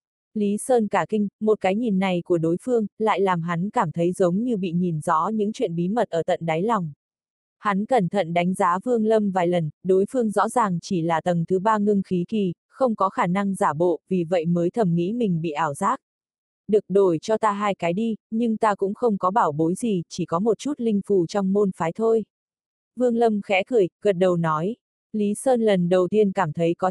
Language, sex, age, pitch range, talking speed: Vietnamese, female, 20-39, 180-220 Hz, 235 wpm